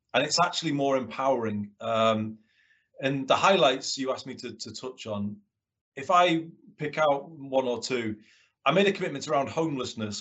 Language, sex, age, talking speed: English, male, 30-49, 170 wpm